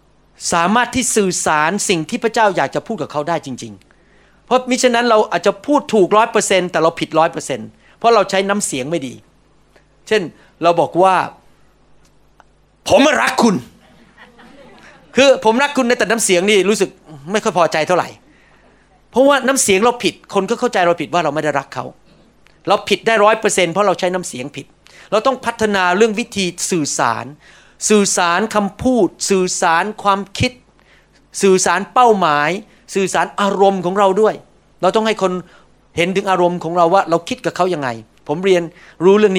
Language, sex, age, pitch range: Thai, male, 30-49, 155-205 Hz